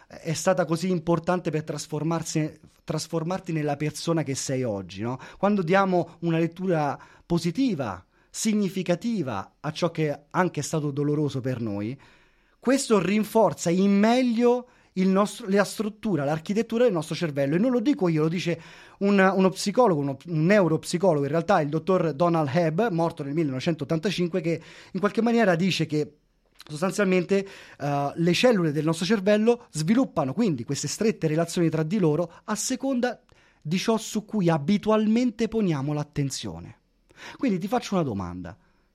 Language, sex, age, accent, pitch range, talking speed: Italian, male, 30-49, native, 150-200 Hz, 140 wpm